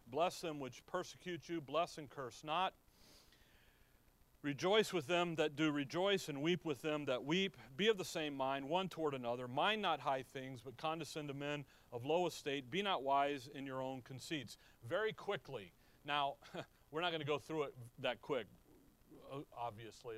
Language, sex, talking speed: English, male, 180 wpm